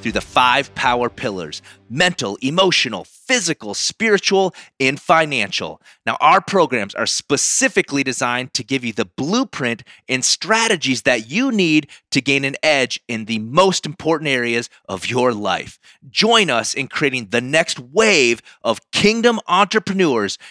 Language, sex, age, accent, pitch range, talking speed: English, male, 30-49, American, 130-195 Hz, 145 wpm